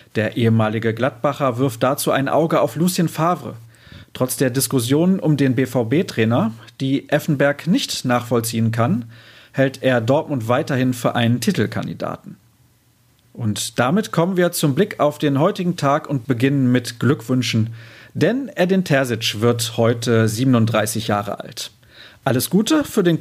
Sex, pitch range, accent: male, 115-150 Hz, German